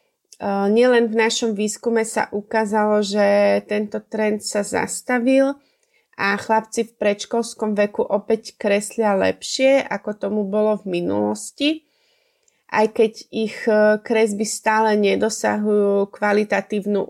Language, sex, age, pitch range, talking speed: Slovak, female, 30-49, 205-235 Hz, 110 wpm